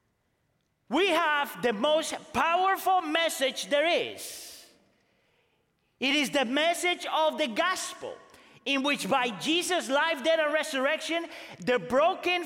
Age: 40-59